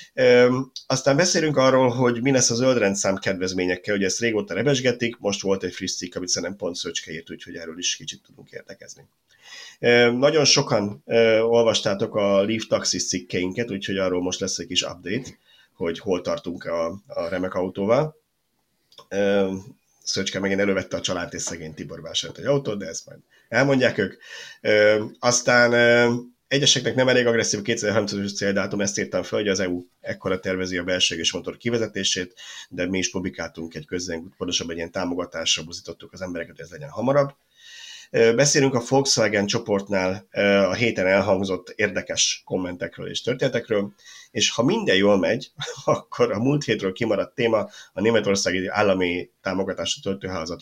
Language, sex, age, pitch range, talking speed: Hungarian, male, 30-49, 95-125 Hz, 160 wpm